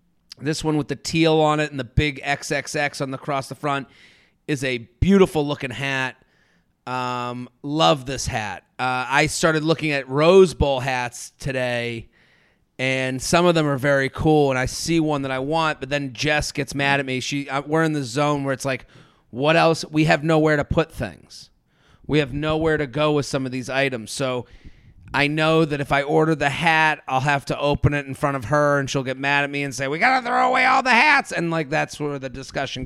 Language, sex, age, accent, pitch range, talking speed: English, male, 30-49, American, 140-170 Hz, 225 wpm